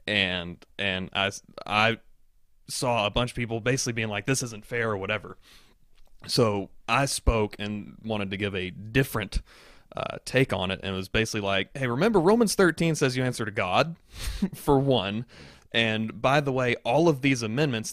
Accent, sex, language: American, male, English